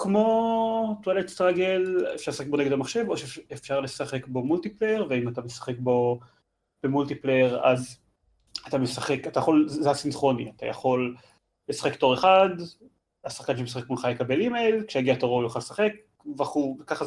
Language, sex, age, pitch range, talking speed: Hebrew, male, 30-49, 130-185 Hz, 140 wpm